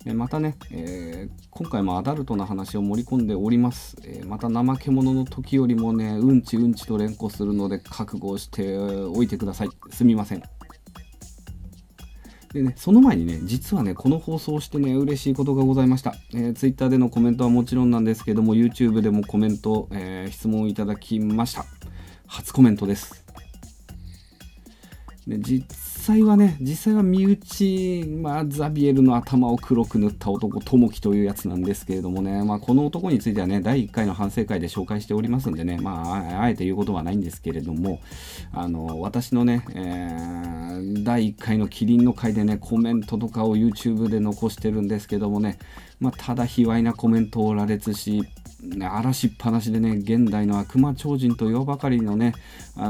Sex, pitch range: male, 100-125 Hz